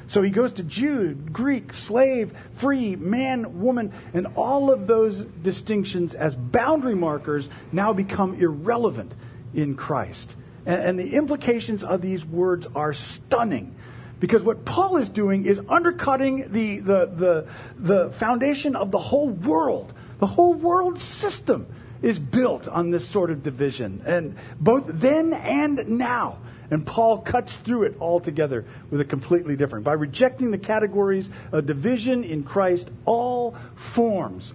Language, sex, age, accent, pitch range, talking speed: English, male, 50-69, American, 140-220 Hz, 145 wpm